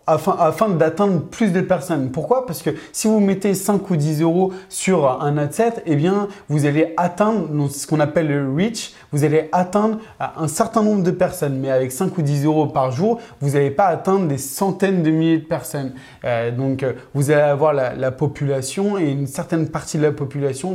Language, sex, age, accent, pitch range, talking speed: French, male, 20-39, French, 140-165 Hz, 205 wpm